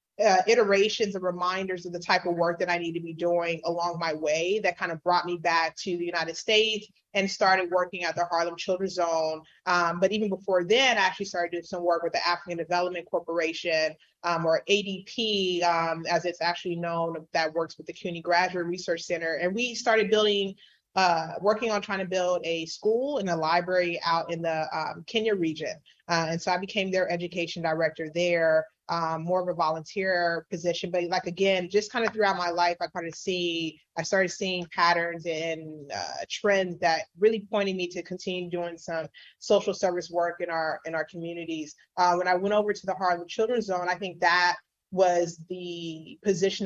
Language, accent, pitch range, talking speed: English, American, 170-190 Hz, 200 wpm